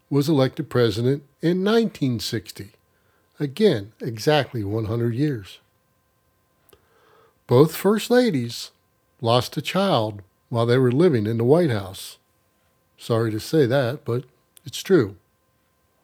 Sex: male